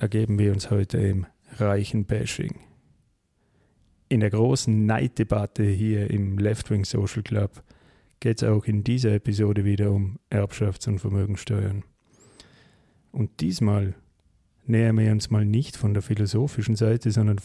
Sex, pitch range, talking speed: male, 105-120 Hz, 135 wpm